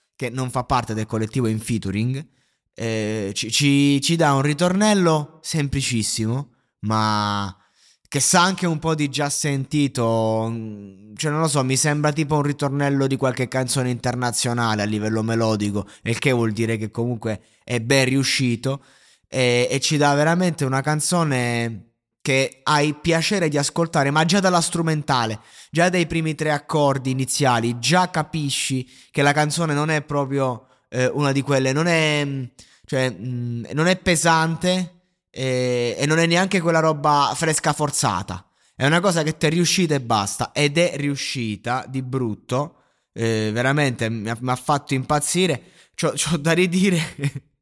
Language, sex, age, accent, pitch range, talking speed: Italian, male, 20-39, native, 125-160 Hz, 150 wpm